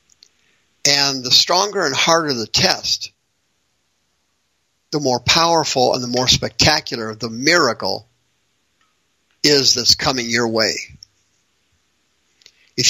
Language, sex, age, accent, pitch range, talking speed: English, male, 50-69, American, 110-150 Hz, 100 wpm